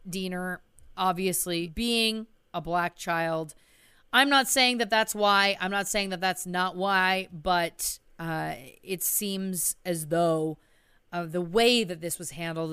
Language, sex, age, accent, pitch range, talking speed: English, female, 30-49, American, 165-190 Hz, 150 wpm